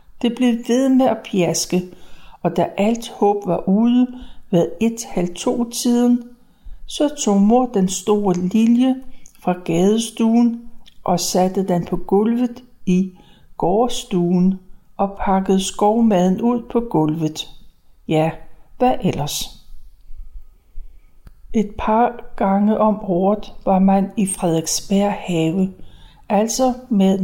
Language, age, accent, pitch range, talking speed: Danish, 60-79, native, 180-235 Hz, 115 wpm